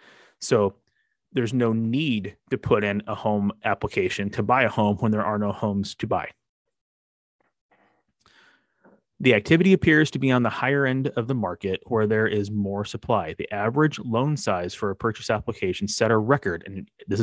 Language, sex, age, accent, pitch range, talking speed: English, male, 30-49, American, 100-125 Hz, 180 wpm